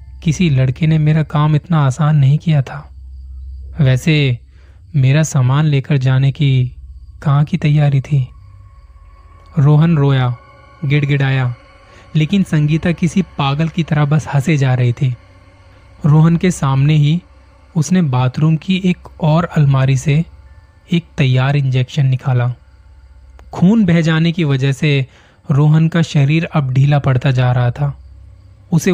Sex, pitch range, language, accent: male, 125-155 Hz, Hindi, native